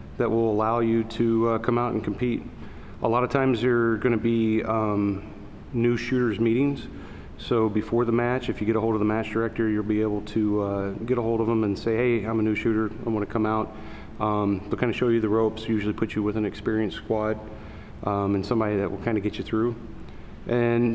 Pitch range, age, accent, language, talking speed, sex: 110-125 Hz, 40-59, American, English, 240 wpm, male